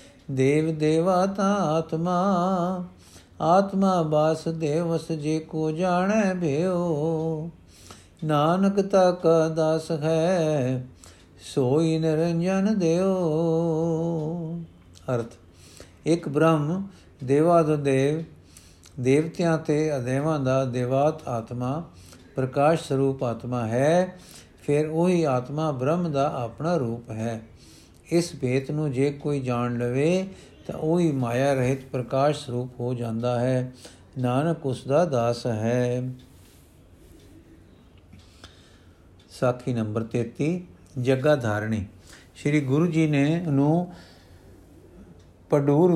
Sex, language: male, Punjabi